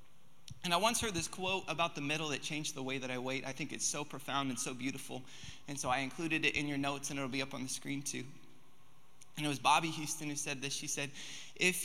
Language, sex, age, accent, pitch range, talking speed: English, male, 20-39, American, 140-180 Hz, 260 wpm